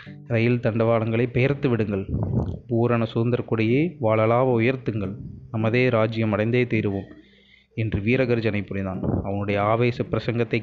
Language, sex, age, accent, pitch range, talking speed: Tamil, male, 20-39, native, 110-120 Hz, 100 wpm